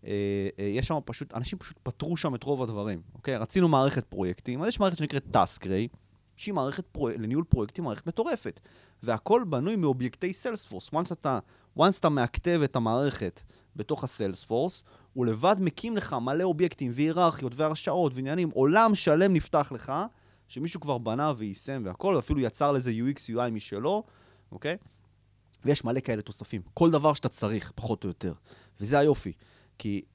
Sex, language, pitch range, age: male, Hebrew, 110-155 Hz, 30-49